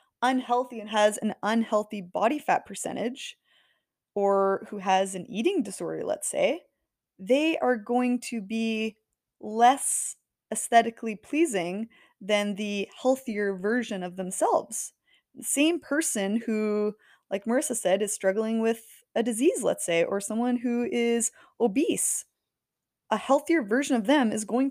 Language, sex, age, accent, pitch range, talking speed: English, female, 20-39, American, 200-250 Hz, 135 wpm